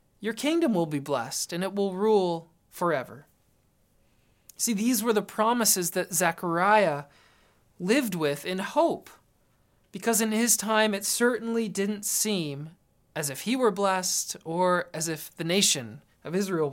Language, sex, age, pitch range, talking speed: English, male, 20-39, 175-240 Hz, 145 wpm